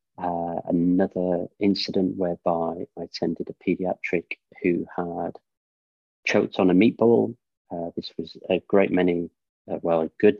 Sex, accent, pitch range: male, British, 85-95 Hz